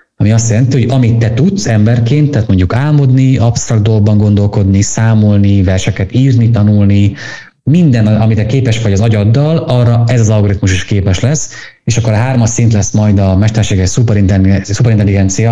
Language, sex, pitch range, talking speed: Hungarian, male, 100-120 Hz, 160 wpm